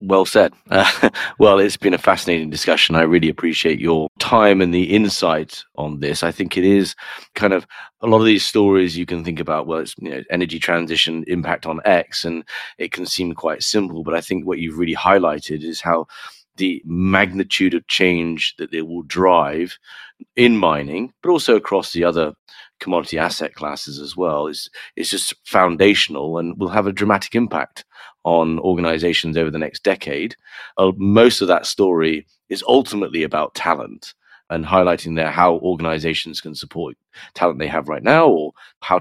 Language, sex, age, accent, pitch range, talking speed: English, male, 30-49, British, 80-95 Hz, 175 wpm